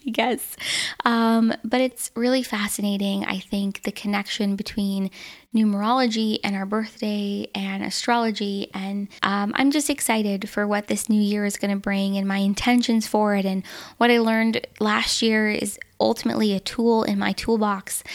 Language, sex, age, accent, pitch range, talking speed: English, female, 20-39, American, 205-245 Hz, 160 wpm